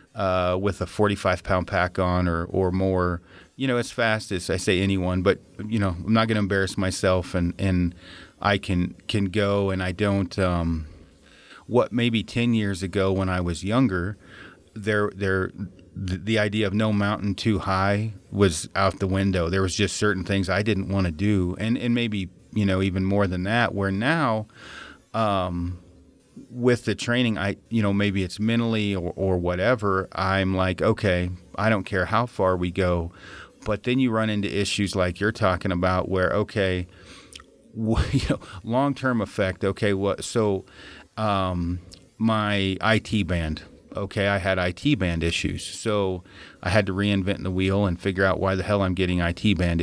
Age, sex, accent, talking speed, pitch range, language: 30-49, male, American, 180 wpm, 90-105 Hz, English